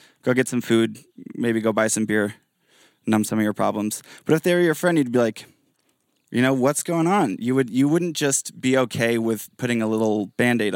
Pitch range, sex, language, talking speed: 110-130 Hz, male, English, 235 wpm